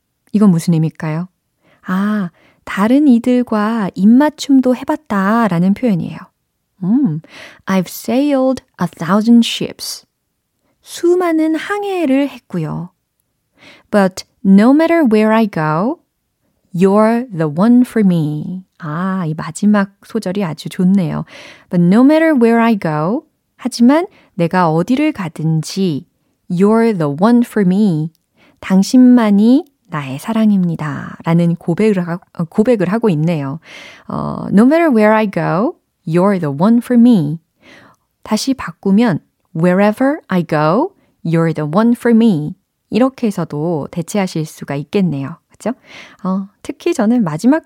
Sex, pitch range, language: female, 170-235 Hz, Korean